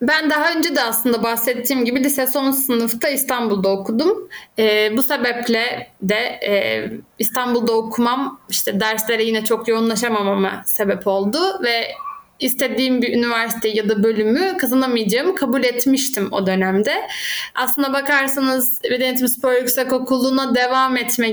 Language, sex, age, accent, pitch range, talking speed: Turkish, female, 20-39, native, 220-295 Hz, 125 wpm